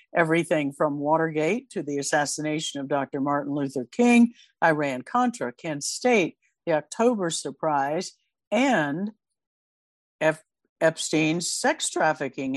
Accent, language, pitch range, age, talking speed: American, English, 150-205 Hz, 60-79, 100 wpm